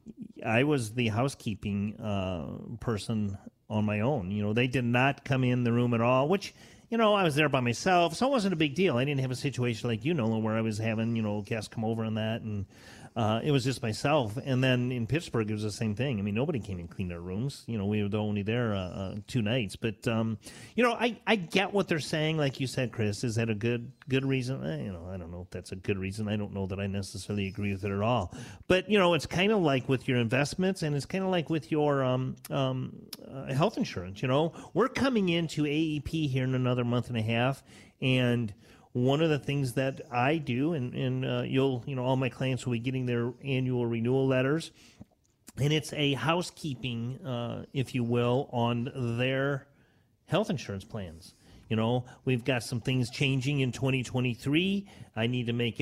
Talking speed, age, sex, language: 230 wpm, 40-59, male, English